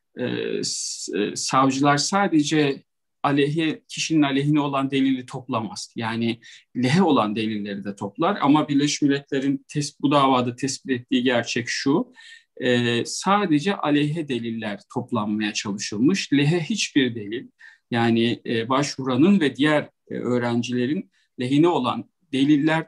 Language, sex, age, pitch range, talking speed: Turkish, male, 50-69, 125-150 Hz, 120 wpm